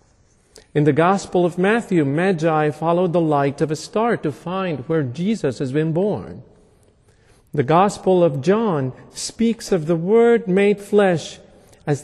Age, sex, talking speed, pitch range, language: 50-69, male, 150 wpm, 145-195 Hz, English